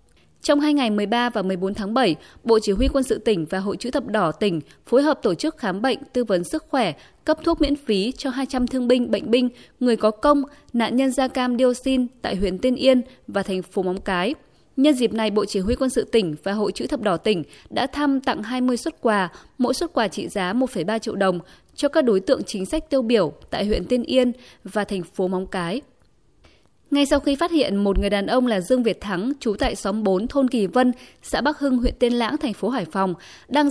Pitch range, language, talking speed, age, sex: 200-265 Hz, Vietnamese, 240 wpm, 20-39, female